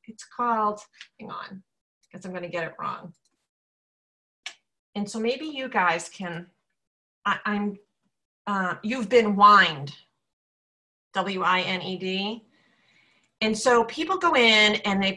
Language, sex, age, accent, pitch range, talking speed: English, female, 40-59, American, 190-240 Hz, 120 wpm